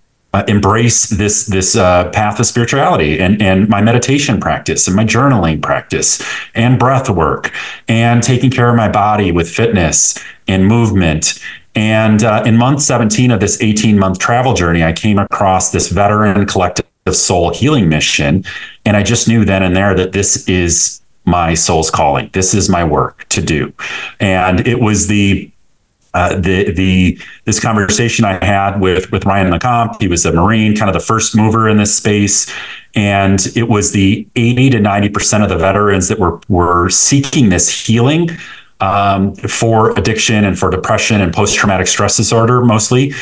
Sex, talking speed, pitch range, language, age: male, 170 wpm, 95-115 Hz, English, 30-49